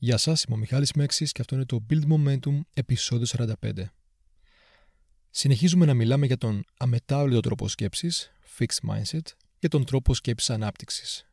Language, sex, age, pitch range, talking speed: Greek, male, 30-49, 110-155 Hz, 155 wpm